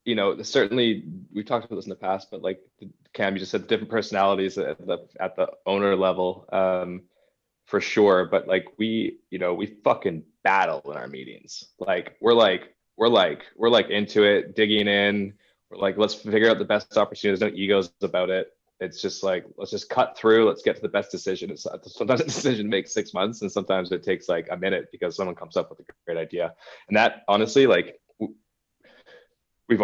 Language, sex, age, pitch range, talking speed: English, male, 20-39, 95-115 Hz, 205 wpm